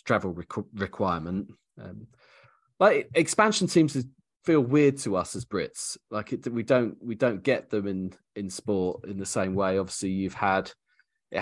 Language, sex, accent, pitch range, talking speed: English, male, British, 95-140 Hz, 175 wpm